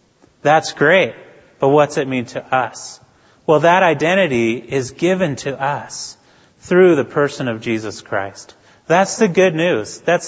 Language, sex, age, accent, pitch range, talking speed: English, male, 30-49, American, 120-165 Hz, 150 wpm